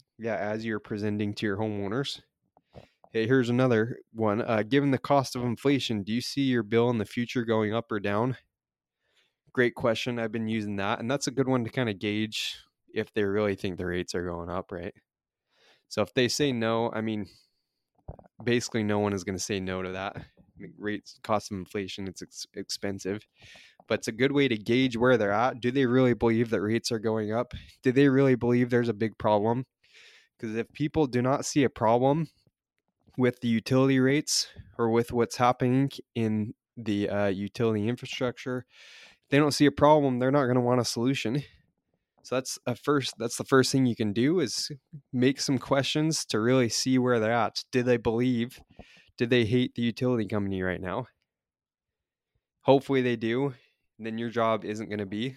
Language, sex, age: English, male, 20-39